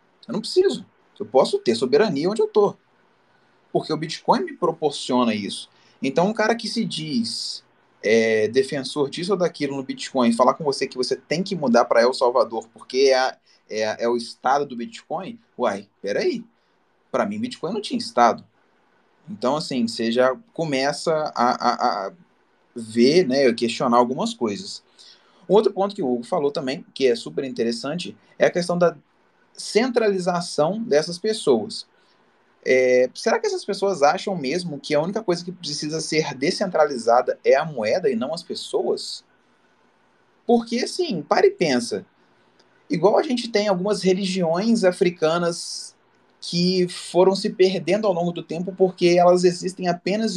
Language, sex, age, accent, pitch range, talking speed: Portuguese, male, 20-39, Brazilian, 145-215 Hz, 155 wpm